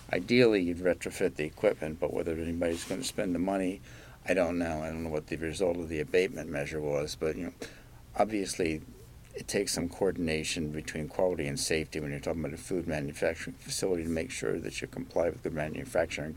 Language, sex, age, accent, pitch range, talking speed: English, male, 50-69, American, 85-120 Hz, 205 wpm